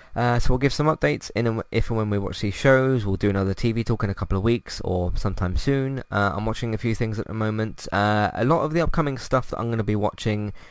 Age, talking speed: 20-39, 280 wpm